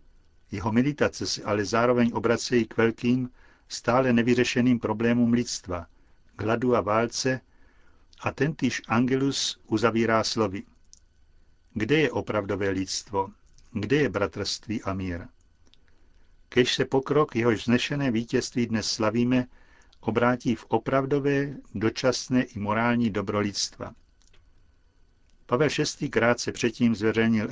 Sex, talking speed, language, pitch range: male, 110 wpm, Czech, 100-125 Hz